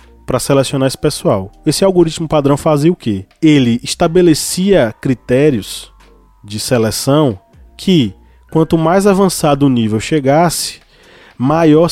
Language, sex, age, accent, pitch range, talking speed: Portuguese, male, 20-39, Brazilian, 115-160 Hz, 115 wpm